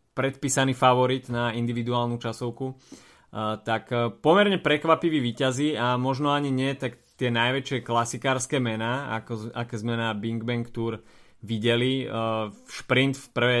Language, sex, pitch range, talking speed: Slovak, male, 115-130 Hz, 130 wpm